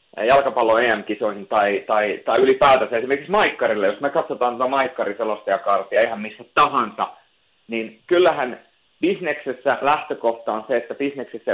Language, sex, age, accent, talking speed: Finnish, male, 30-49, native, 125 wpm